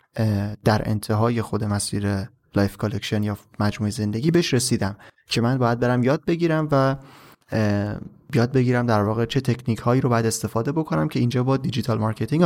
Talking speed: 160 wpm